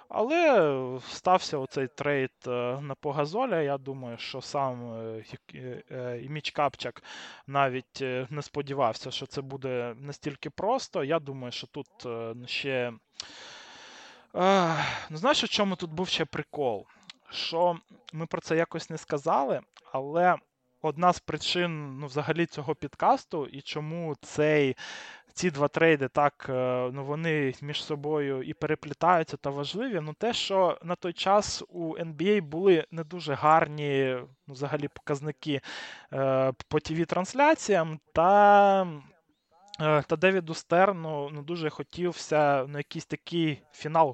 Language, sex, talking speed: Russian, male, 125 wpm